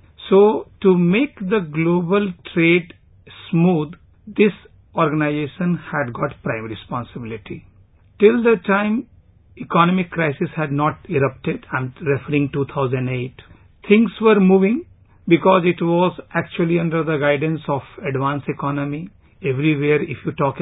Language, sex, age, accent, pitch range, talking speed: English, male, 50-69, Indian, 140-190 Hz, 120 wpm